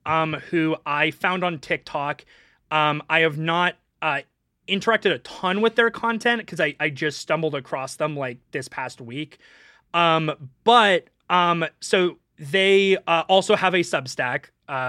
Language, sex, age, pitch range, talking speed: English, male, 30-49, 145-190 Hz, 155 wpm